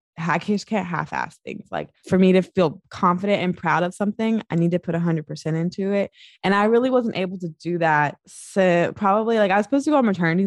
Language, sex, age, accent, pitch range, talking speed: English, female, 20-39, American, 150-195 Hz, 235 wpm